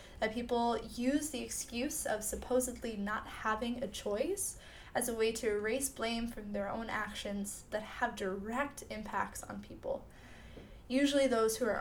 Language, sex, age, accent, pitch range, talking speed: English, female, 10-29, American, 200-245 Hz, 160 wpm